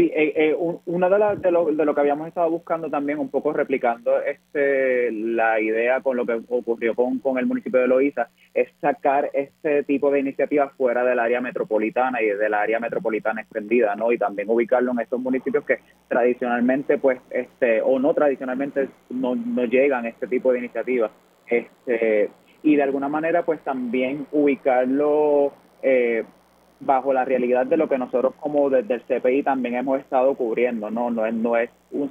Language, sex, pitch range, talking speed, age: Spanish, male, 120-140 Hz, 180 wpm, 20-39